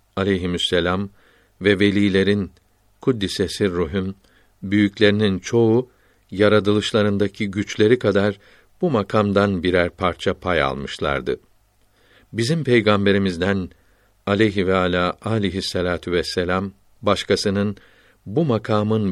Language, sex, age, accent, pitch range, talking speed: Turkish, male, 60-79, native, 95-110 Hz, 80 wpm